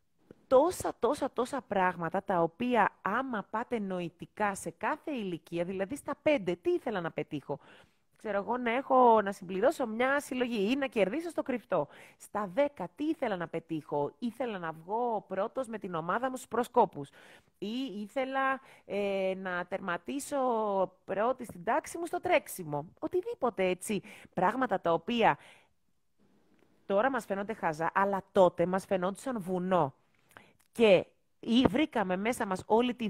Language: Greek